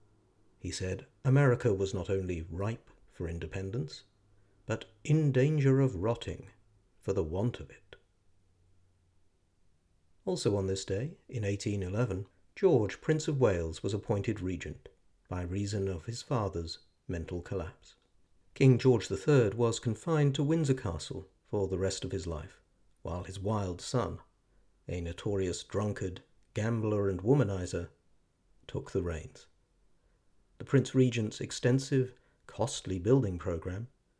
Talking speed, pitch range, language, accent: 130 wpm, 90-115 Hz, English, British